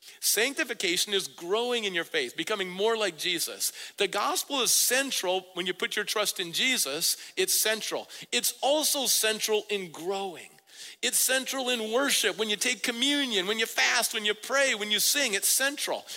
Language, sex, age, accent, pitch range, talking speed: English, male, 50-69, American, 190-275 Hz, 175 wpm